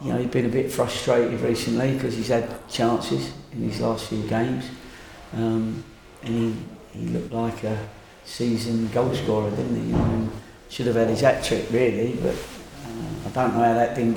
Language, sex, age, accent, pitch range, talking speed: English, male, 40-59, British, 110-115 Hz, 195 wpm